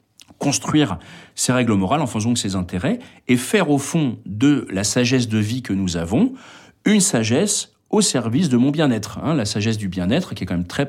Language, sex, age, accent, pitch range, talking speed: French, male, 40-59, French, 100-135 Hz, 205 wpm